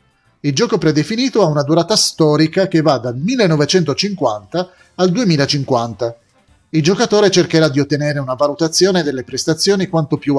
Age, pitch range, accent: 30-49, 130-180 Hz, native